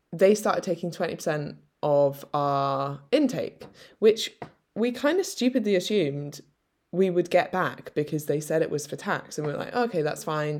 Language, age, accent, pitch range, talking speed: English, 10-29, British, 145-195 Hz, 170 wpm